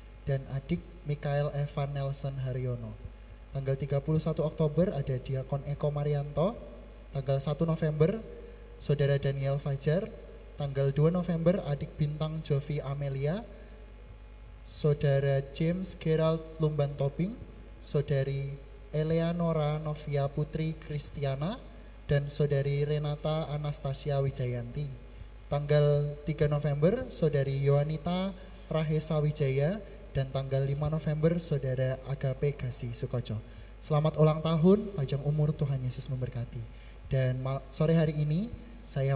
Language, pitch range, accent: Indonesian, 130-155 Hz, native